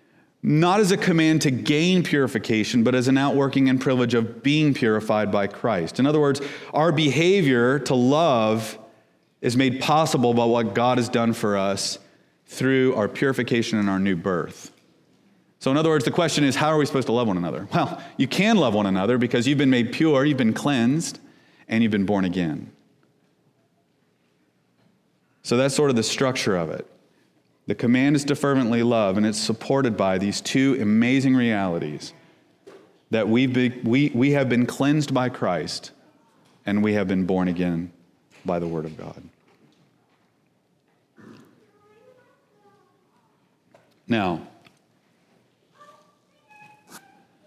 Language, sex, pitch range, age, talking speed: English, male, 110-145 Hz, 30-49, 150 wpm